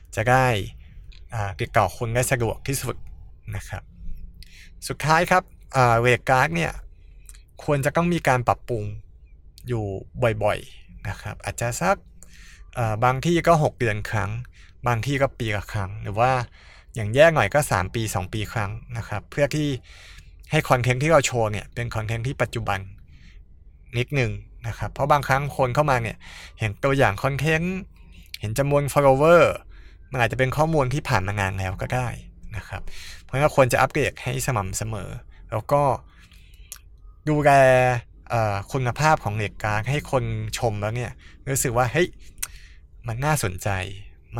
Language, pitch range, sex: Thai, 95-130 Hz, male